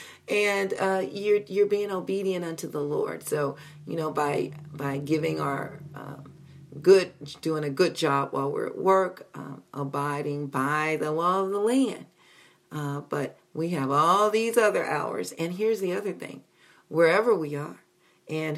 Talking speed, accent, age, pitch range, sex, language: 165 wpm, American, 40-59, 150-190 Hz, female, English